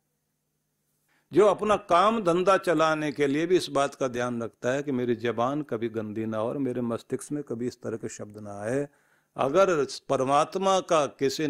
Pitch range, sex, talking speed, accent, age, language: 120-160 Hz, male, 185 wpm, native, 50-69, Hindi